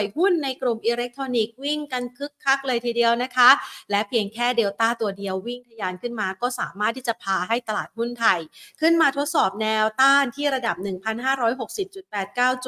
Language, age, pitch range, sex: Thai, 30-49, 210-265 Hz, female